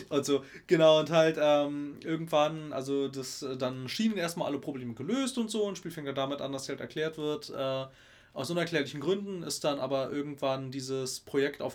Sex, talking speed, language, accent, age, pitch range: male, 175 wpm, German, German, 30-49, 135-165 Hz